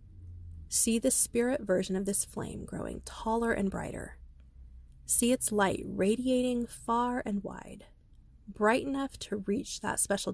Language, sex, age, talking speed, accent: English, female, 30-49, 140 wpm, American